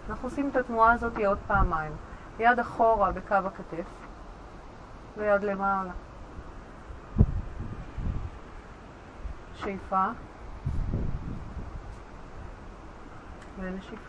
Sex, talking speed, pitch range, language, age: female, 65 wpm, 190-220 Hz, Hebrew, 30-49